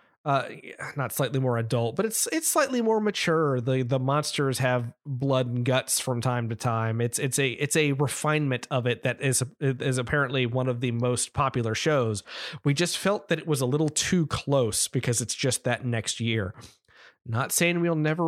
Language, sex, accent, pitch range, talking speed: English, male, American, 120-160 Hz, 195 wpm